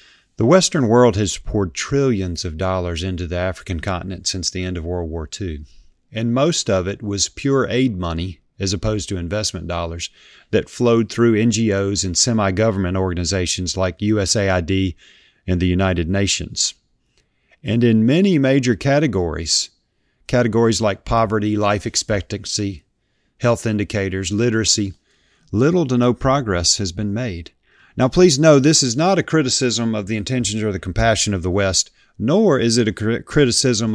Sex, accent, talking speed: male, American, 155 wpm